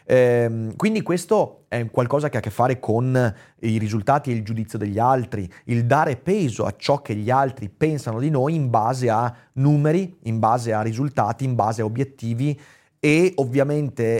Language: Italian